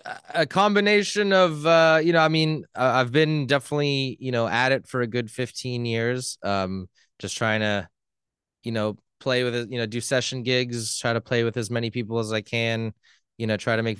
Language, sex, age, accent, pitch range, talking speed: English, male, 20-39, American, 110-130 Hz, 210 wpm